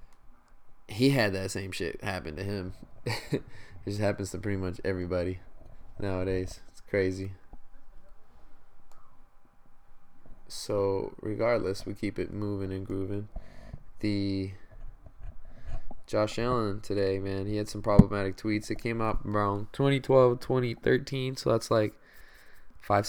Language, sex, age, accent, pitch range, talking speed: English, male, 20-39, American, 100-115 Hz, 120 wpm